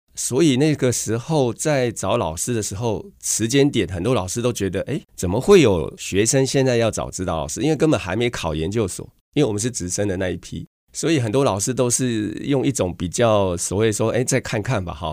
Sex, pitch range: male, 95-125 Hz